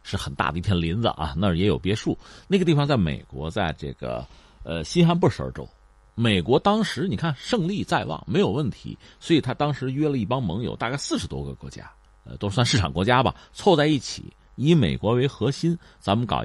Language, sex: Chinese, male